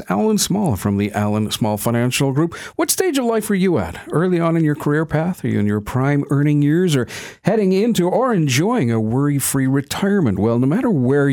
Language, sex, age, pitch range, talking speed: English, male, 50-69, 130-195 Hz, 210 wpm